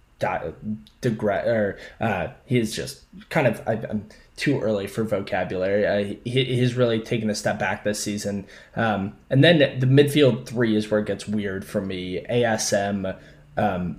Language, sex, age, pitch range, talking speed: English, male, 20-39, 100-120 Hz, 165 wpm